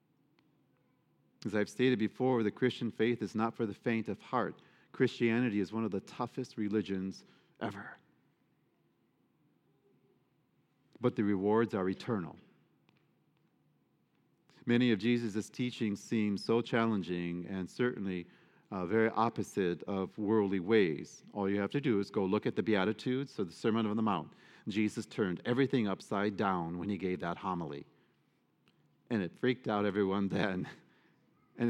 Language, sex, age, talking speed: English, male, 40-59, 145 wpm